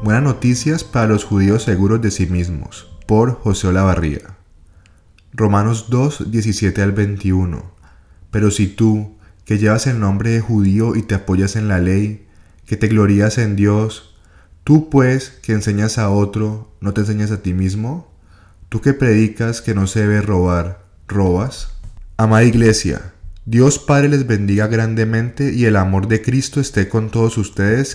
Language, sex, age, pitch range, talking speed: Spanish, male, 20-39, 95-115 Hz, 160 wpm